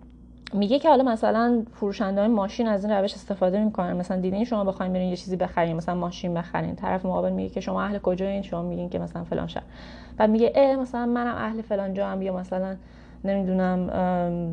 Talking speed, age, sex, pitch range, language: 195 wpm, 20-39, female, 175-205 Hz, Persian